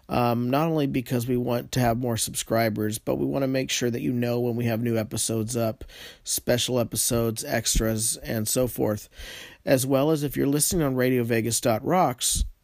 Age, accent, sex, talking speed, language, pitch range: 40-59, American, male, 185 wpm, English, 115-130 Hz